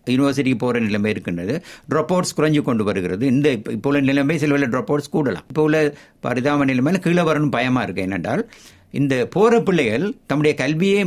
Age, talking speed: 60-79, 150 wpm